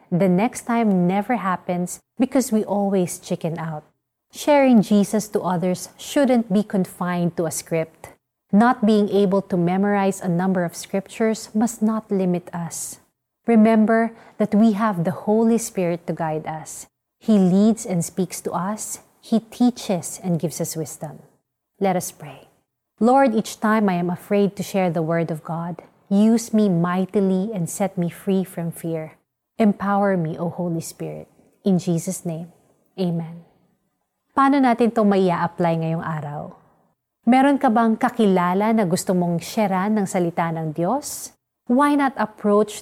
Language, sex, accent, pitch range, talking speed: Filipino, female, native, 175-220 Hz, 155 wpm